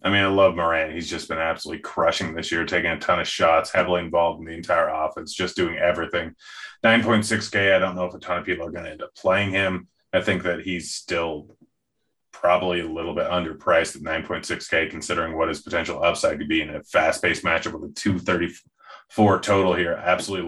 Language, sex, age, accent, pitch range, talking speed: English, male, 30-49, American, 85-100 Hz, 210 wpm